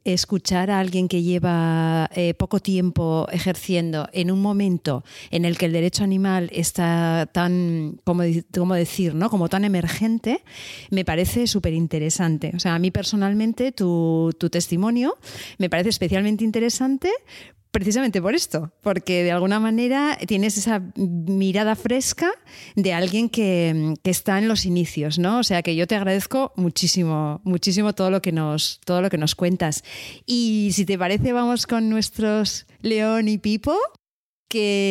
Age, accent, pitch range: 40-59, Spanish, 170-215 Hz